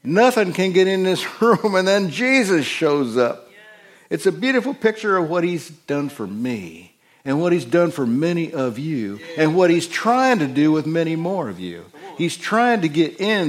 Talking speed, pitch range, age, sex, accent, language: 200 wpm, 145-185 Hz, 60-79, male, American, English